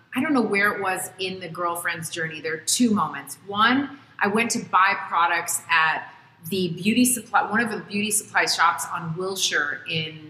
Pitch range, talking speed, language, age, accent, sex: 170-225 Hz, 190 wpm, English, 30-49, American, female